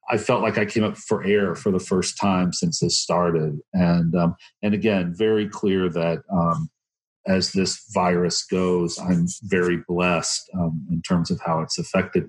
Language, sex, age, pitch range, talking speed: English, male, 40-59, 85-105 Hz, 180 wpm